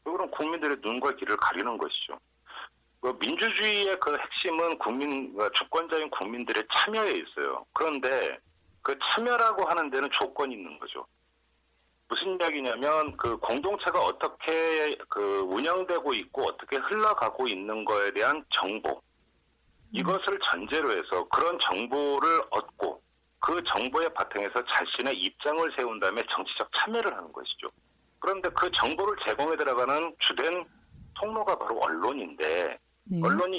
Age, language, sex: 40-59, Korean, male